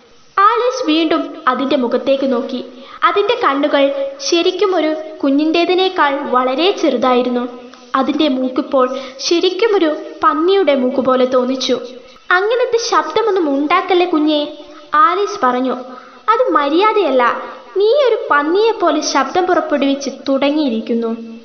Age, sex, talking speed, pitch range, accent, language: 20-39, female, 90 wpm, 250-320 Hz, native, Malayalam